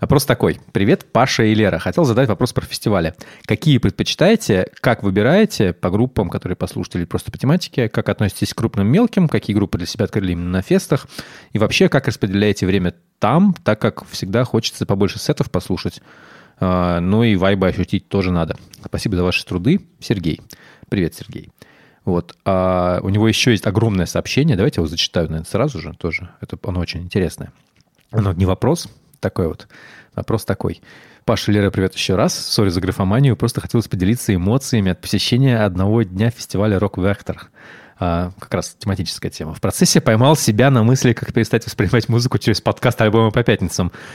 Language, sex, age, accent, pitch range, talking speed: Russian, male, 30-49, native, 95-120 Hz, 170 wpm